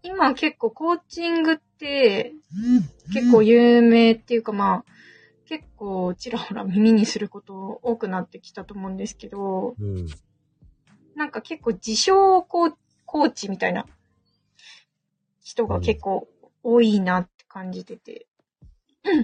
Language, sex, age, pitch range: Japanese, female, 20-39, 205-270 Hz